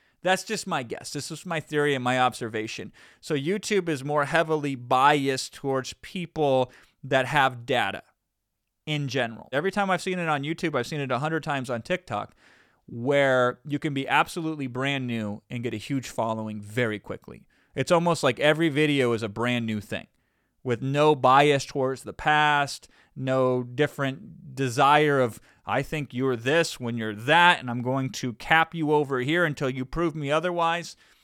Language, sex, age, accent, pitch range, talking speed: English, male, 30-49, American, 125-160 Hz, 180 wpm